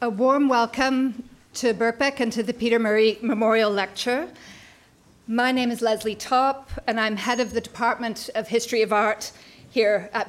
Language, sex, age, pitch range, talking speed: English, female, 40-59, 215-250 Hz, 170 wpm